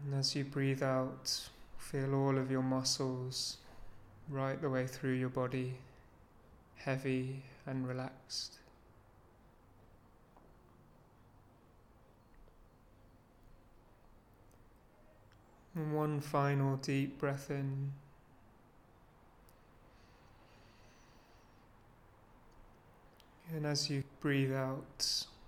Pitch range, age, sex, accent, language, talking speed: 115-140 Hz, 30-49, male, British, English, 70 wpm